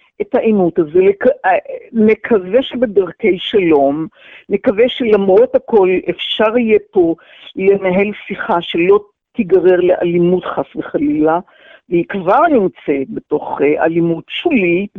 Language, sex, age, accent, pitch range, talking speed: Hebrew, female, 50-69, native, 180-295 Hz, 105 wpm